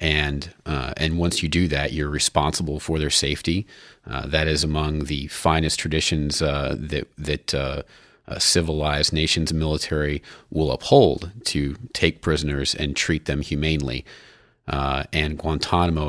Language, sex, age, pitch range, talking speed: English, male, 30-49, 70-80 Hz, 145 wpm